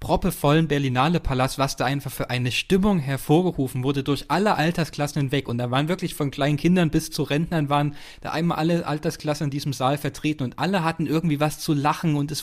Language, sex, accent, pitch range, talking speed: German, male, German, 130-155 Hz, 205 wpm